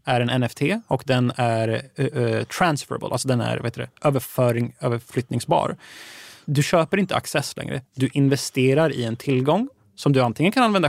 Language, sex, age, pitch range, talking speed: Swedish, male, 20-39, 125-160 Hz, 160 wpm